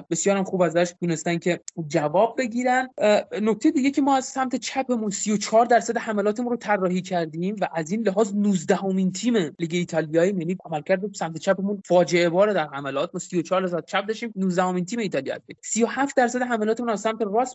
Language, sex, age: Persian, male, 20-39